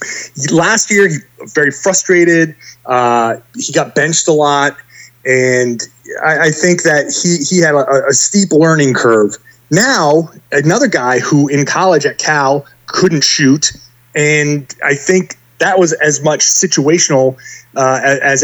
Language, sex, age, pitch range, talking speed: English, male, 30-49, 130-170 Hz, 145 wpm